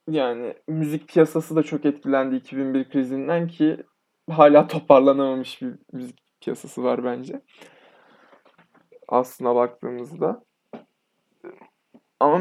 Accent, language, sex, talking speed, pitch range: native, Turkish, male, 90 wpm, 130-165 Hz